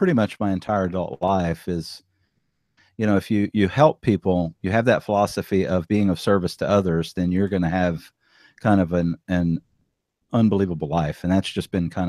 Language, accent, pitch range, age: English, American, 90-110 Hz, 40-59